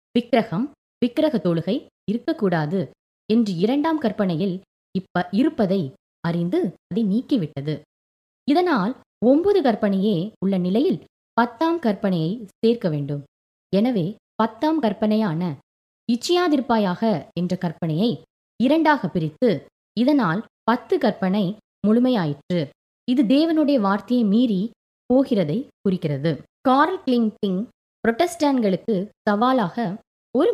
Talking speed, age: 85 wpm, 20-39